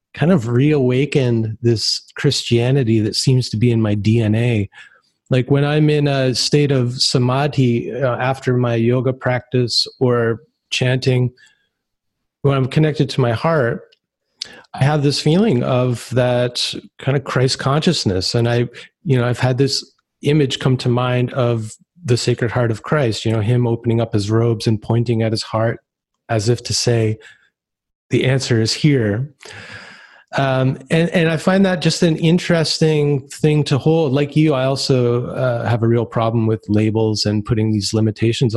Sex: male